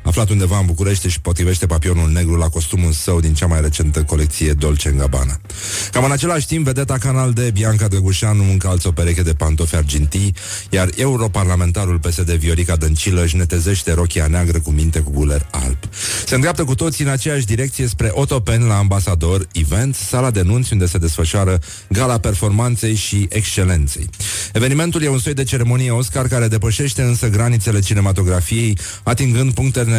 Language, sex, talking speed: Romanian, male, 165 wpm